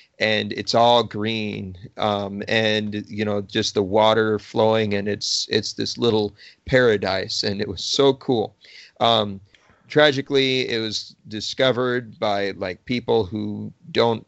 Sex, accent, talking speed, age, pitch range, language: male, American, 140 wpm, 30-49, 105-120 Hz, English